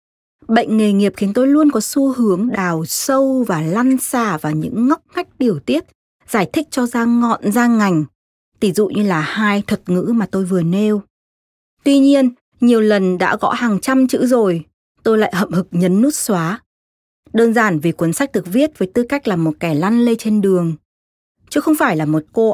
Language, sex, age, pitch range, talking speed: Vietnamese, female, 20-39, 180-240 Hz, 210 wpm